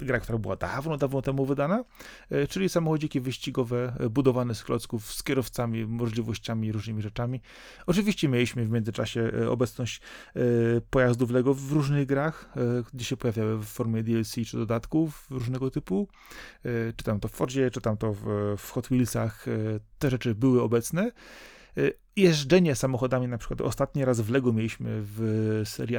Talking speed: 150 wpm